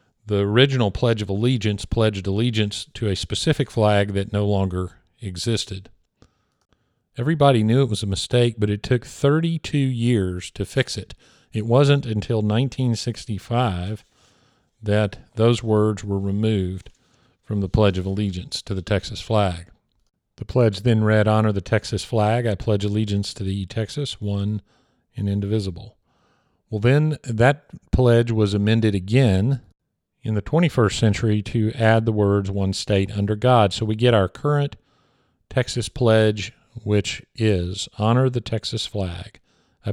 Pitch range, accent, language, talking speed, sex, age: 100-120 Hz, American, English, 145 wpm, male, 50-69